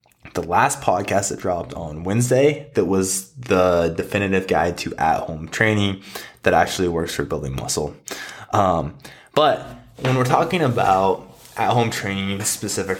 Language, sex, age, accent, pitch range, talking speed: English, male, 20-39, American, 95-125 Hz, 150 wpm